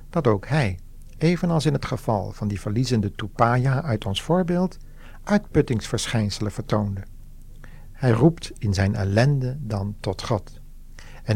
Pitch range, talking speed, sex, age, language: 105-140 Hz, 130 wpm, male, 60-79, Dutch